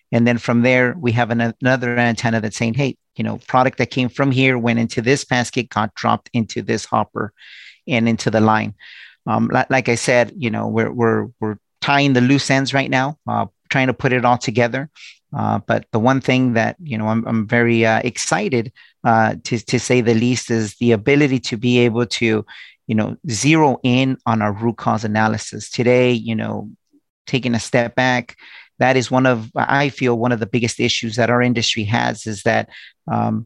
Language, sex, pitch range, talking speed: English, male, 115-130 Hz, 205 wpm